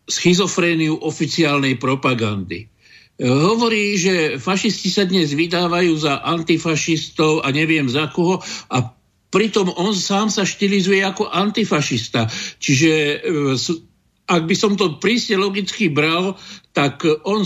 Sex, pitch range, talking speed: male, 140-185 Hz, 115 wpm